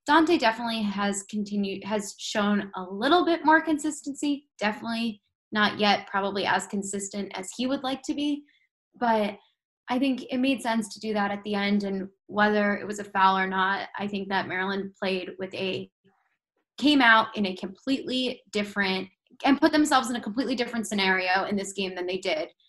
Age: 10-29